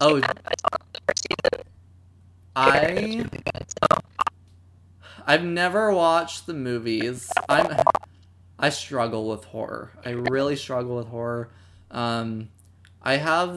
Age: 20-39